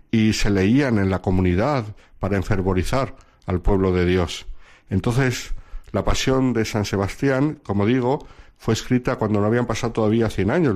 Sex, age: male, 60-79